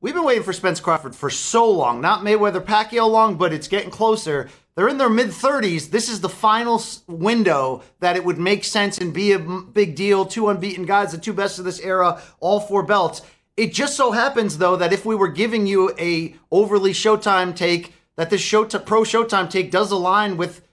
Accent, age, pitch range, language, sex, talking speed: American, 30-49, 170-210 Hz, English, male, 210 wpm